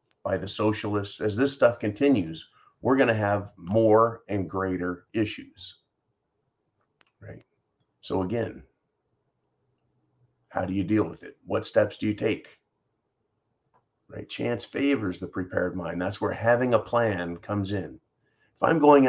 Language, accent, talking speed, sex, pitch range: English, American, 140 wpm, male, 100-125 Hz